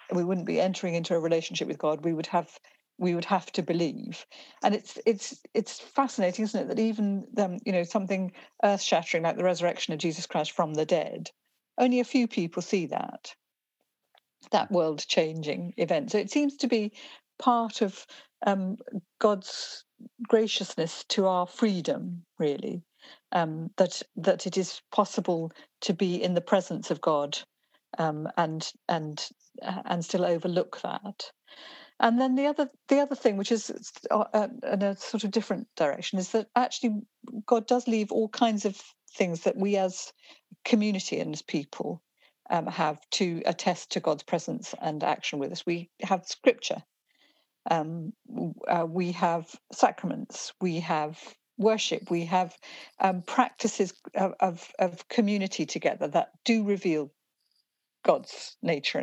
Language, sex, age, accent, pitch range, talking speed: English, female, 50-69, British, 170-225 Hz, 155 wpm